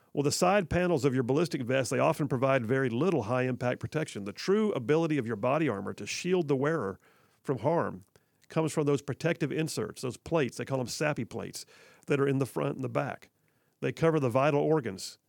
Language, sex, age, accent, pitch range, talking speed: English, male, 50-69, American, 130-155 Hz, 210 wpm